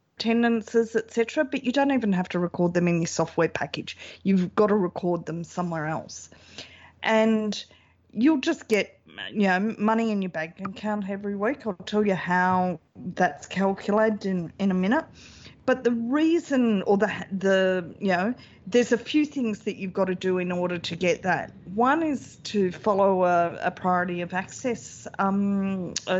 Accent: Australian